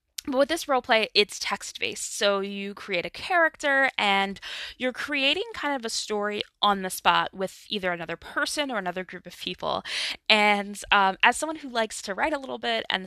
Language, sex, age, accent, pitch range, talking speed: English, female, 10-29, American, 180-235 Hz, 200 wpm